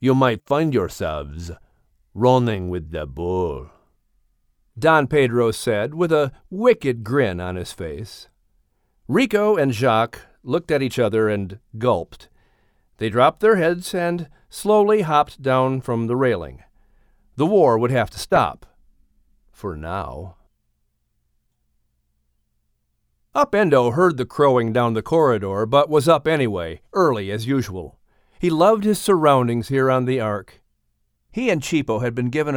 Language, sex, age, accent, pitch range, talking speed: English, male, 50-69, American, 110-165 Hz, 135 wpm